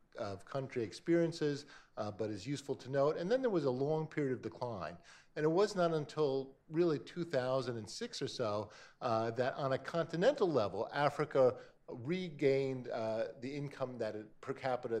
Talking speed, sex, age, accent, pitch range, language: 170 wpm, male, 50-69, American, 115-150 Hz, English